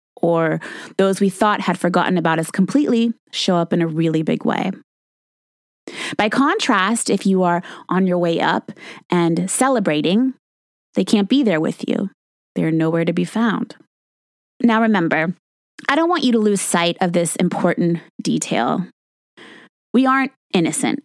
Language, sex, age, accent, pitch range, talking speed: English, female, 20-39, American, 180-250 Hz, 155 wpm